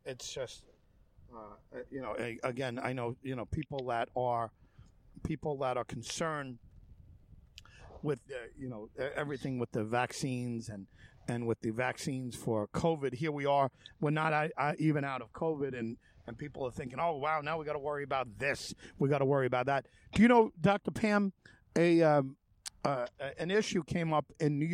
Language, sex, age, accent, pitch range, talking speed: English, male, 50-69, American, 120-160 Hz, 180 wpm